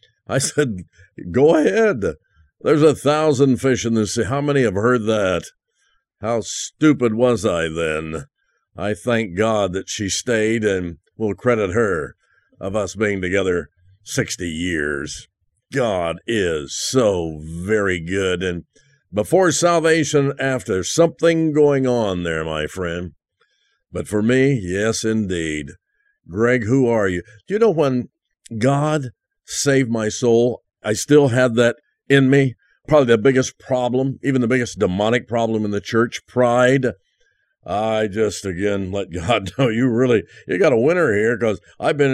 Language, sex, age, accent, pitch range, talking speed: English, male, 50-69, American, 100-140 Hz, 150 wpm